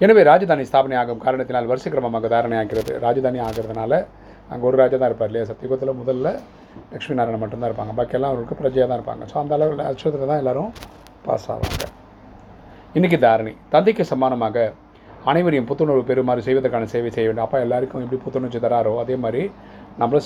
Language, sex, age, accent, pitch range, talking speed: Tamil, male, 30-49, native, 115-130 Hz, 160 wpm